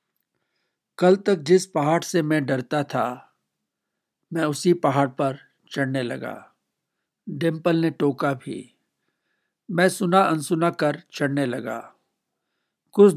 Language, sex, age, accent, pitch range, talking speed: Hindi, male, 60-79, native, 140-170 Hz, 115 wpm